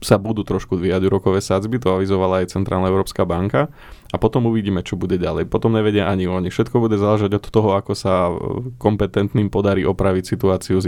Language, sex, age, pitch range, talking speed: Slovak, male, 20-39, 95-110 Hz, 190 wpm